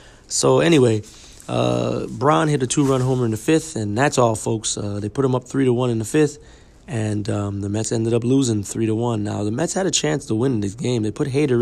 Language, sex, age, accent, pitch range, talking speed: English, male, 30-49, American, 110-130 Hz, 255 wpm